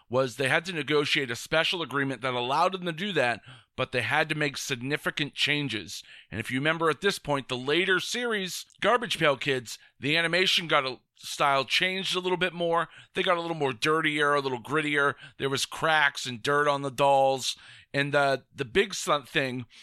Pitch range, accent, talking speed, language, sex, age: 130-165 Hz, American, 200 wpm, English, male, 40-59